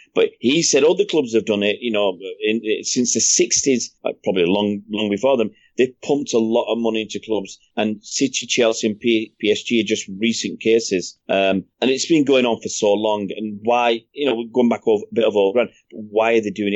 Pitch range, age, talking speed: 105-140 Hz, 30-49, 235 wpm